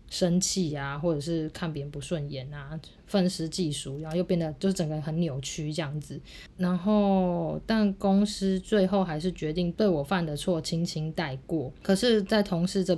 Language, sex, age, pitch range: Chinese, female, 20-39, 155-185 Hz